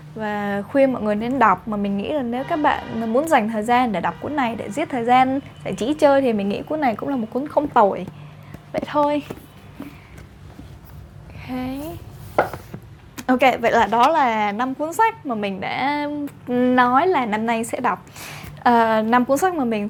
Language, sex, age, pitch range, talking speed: Vietnamese, female, 10-29, 225-275 Hz, 195 wpm